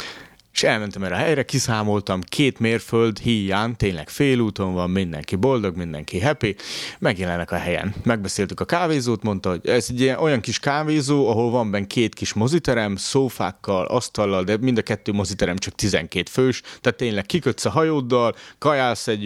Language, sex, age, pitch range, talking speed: Hungarian, male, 30-49, 100-135 Hz, 165 wpm